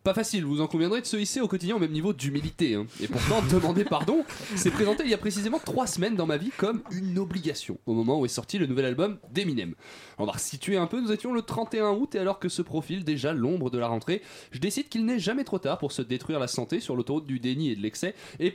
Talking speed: 265 wpm